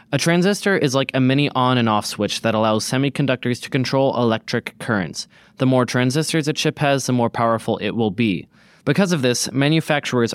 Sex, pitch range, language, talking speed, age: male, 110-135 Hz, English, 190 wpm, 20-39